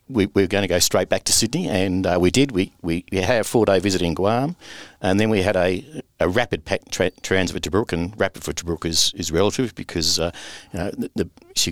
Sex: male